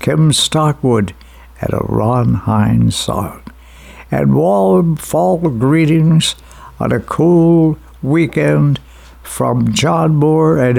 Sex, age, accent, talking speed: male, 60-79, American, 100 wpm